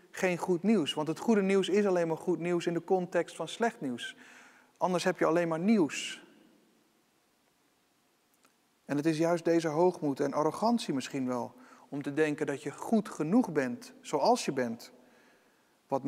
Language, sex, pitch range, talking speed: Dutch, male, 140-180 Hz, 170 wpm